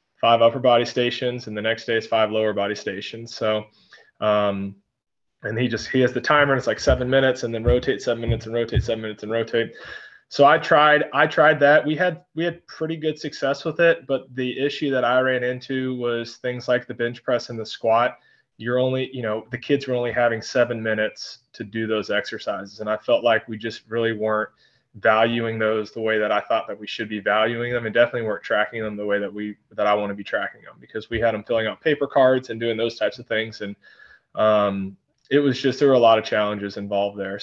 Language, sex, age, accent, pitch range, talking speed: English, male, 20-39, American, 105-130 Hz, 240 wpm